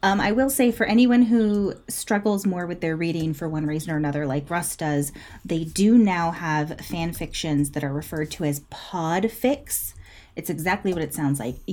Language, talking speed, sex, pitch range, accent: English, 195 wpm, female, 150-205 Hz, American